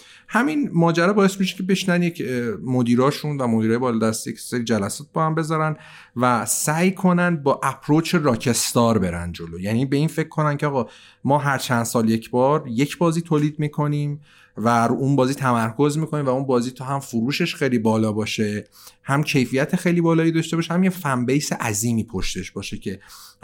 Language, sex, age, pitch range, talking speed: Persian, male, 40-59, 110-150 Hz, 175 wpm